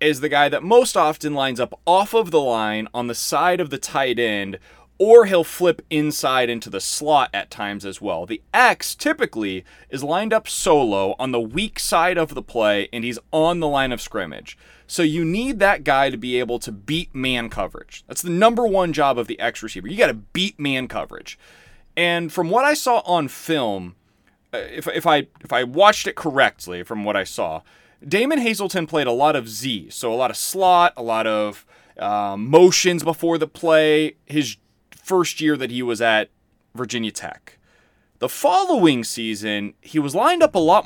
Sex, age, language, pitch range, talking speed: male, 30-49, English, 120-180 Hz, 195 wpm